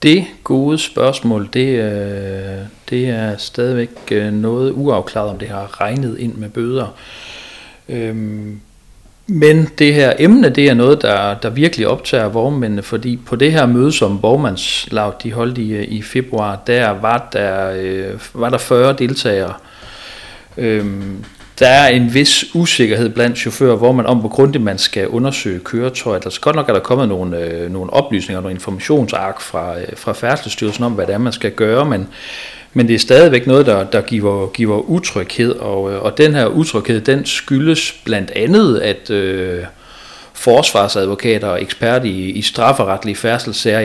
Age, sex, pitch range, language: 40-59, male, 100-125 Hz, Danish